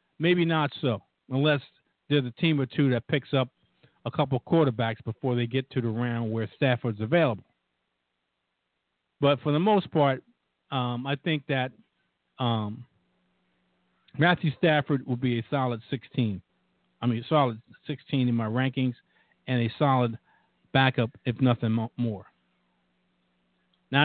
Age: 50-69